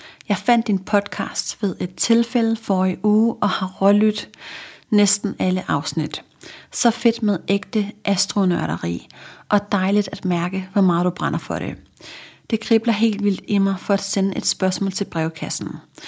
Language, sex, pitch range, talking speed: Danish, female, 190-220 Hz, 165 wpm